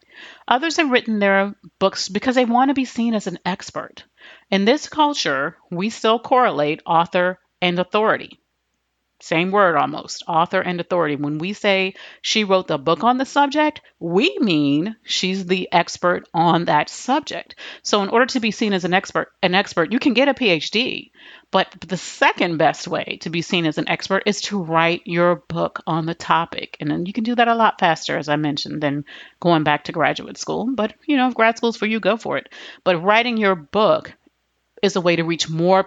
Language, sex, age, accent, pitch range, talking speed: English, female, 40-59, American, 170-225 Hz, 200 wpm